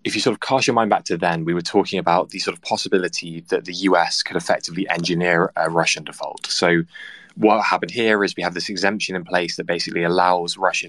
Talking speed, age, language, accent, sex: 230 wpm, 20-39, English, British, male